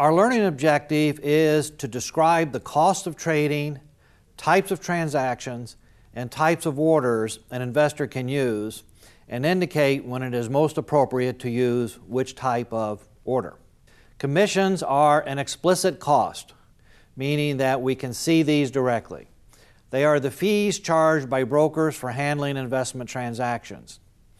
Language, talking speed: English, 140 wpm